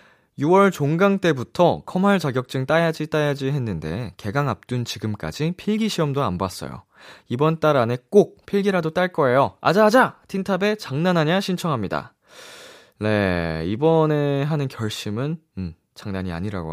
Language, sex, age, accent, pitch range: Korean, male, 20-39, native, 105-165 Hz